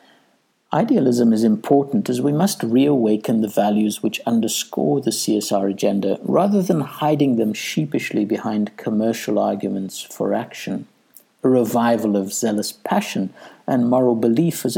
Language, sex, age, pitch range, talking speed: English, male, 60-79, 105-140 Hz, 135 wpm